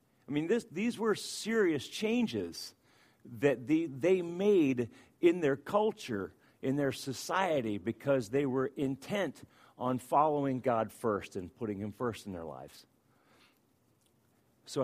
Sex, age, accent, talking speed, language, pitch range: male, 50-69, American, 125 wpm, English, 110-140 Hz